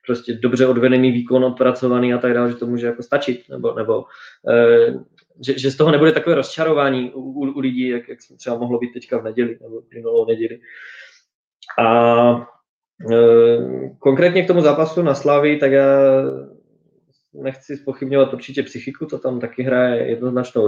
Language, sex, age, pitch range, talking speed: Czech, male, 20-39, 120-140 Hz, 170 wpm